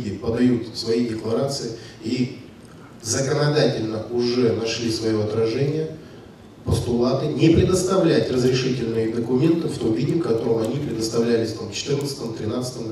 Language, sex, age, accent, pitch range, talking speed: Russian, male, 20-39, native, 115-140 Hz, 105 wpm